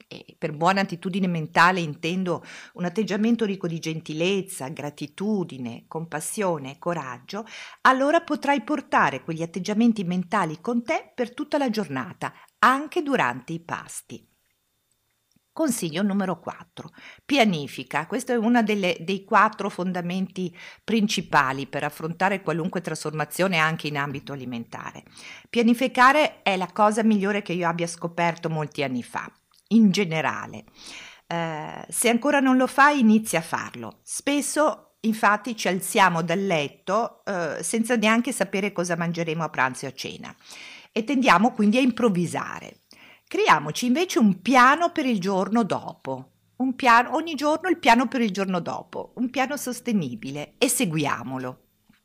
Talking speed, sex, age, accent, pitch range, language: 135 wpm, female, 50-69, native, 160-240 Hz, Italian